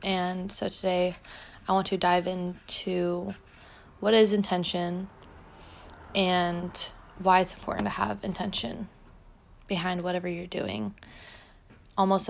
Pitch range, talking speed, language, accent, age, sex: 175-195 Hz, 110 wpm, English, American, 20-39, female